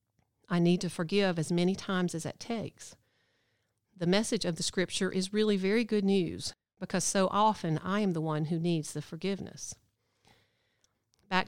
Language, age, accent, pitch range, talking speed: English, 50-69, American, 150-185 Hz, 165 wpm